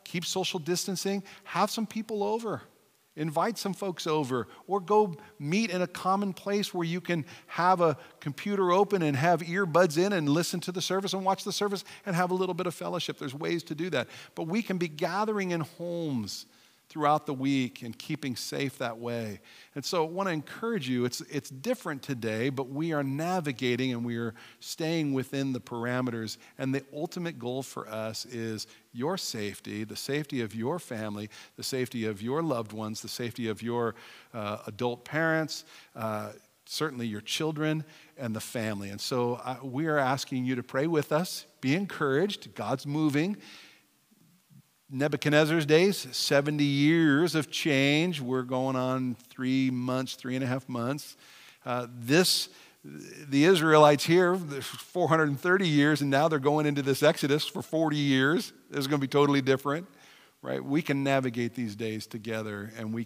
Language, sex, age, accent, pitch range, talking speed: English, male, 50-69, American, 125-170 Hz, 175 wpm